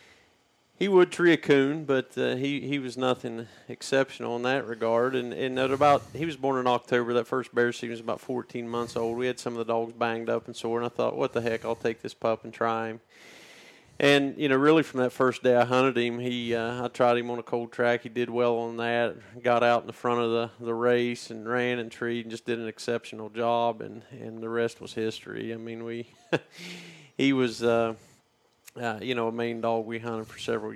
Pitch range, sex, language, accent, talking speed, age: 115-125 Hz, male, English, American, 240 wpm, 40-59